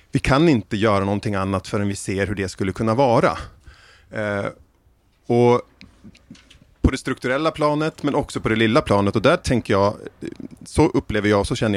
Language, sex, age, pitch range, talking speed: Swedish, male, 30-49, 100-130 Hz, 175 wpm